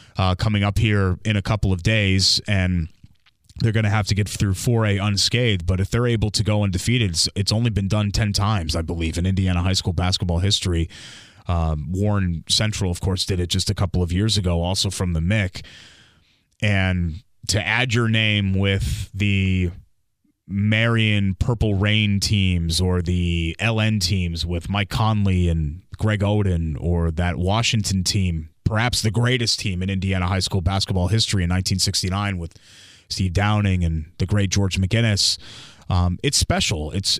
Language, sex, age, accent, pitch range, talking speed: English, male, 30-49, American, 95-115 Hz, 175 wpm